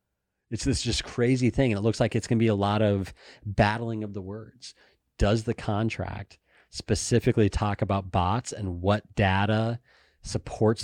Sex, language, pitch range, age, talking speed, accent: male, English, 95-115 Hz, 30-49, 170 wpm, American